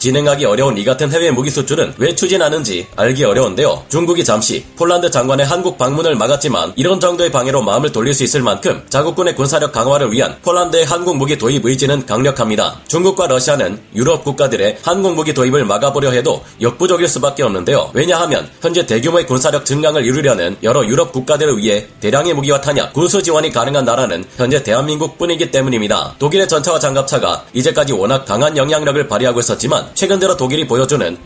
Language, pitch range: Korean, 130-165 Hz